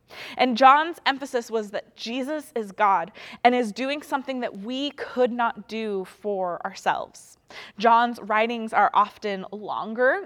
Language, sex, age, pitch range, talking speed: English, female, 20-39, 215-280 Hz, 140 wpm